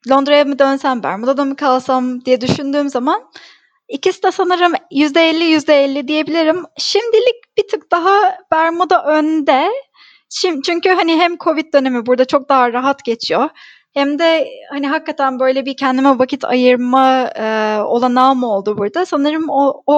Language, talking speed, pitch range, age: Turkish, 150 wpm, 255-330 Hz, 10-29